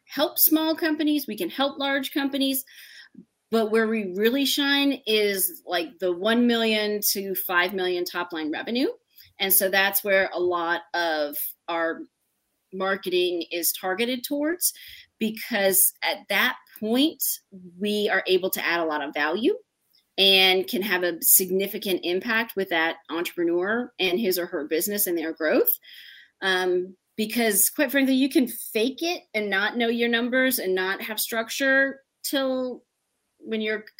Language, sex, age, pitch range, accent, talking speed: English, female, 30-49, 185-270 Hz, American, 150 wpm